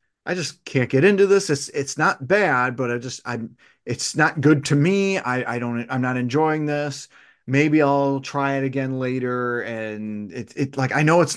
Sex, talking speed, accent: male, 205 wpm, American